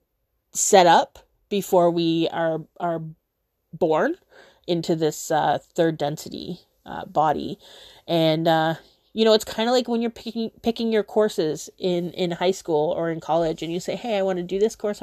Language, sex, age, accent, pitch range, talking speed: English, female, 30-49, American, 180-225 Hz, 180 wpm